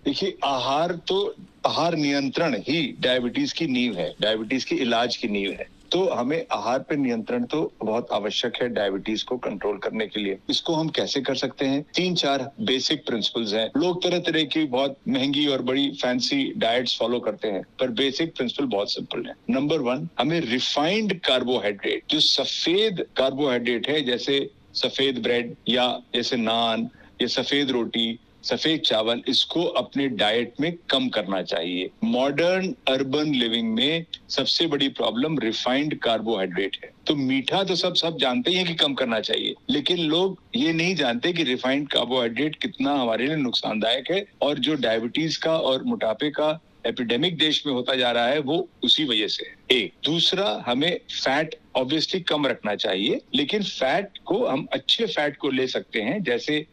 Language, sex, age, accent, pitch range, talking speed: English, male, 60-79, Indian, 125-170 Hz, 125 wpm